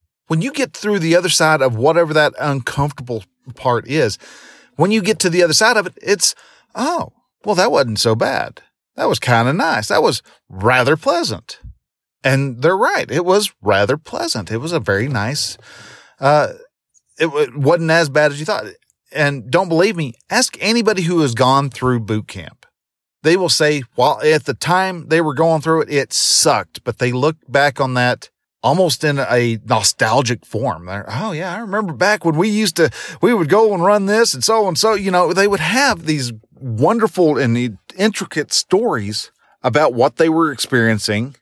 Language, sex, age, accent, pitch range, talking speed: English, male, 40-59, American, 120-170 Hz, 190 wpm